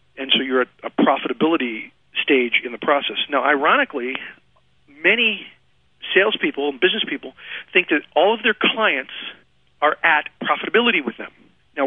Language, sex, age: English, male, 40-59